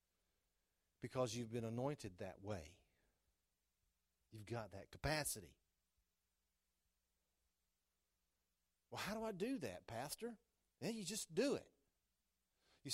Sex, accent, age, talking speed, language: male, American, 40-59, 110 wpm, English